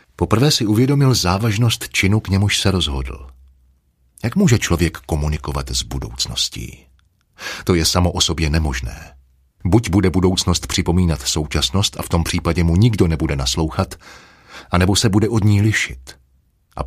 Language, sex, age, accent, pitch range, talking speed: Czech, male, 40-59, native, 75-105 Hz, 145 wpm